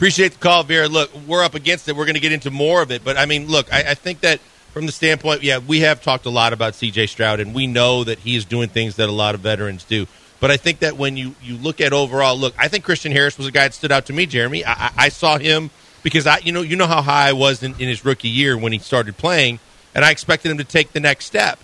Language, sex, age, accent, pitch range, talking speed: English, male, 40-59, American, 130-155 Hz, 295 wpm